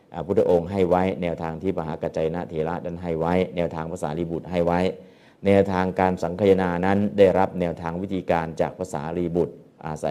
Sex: male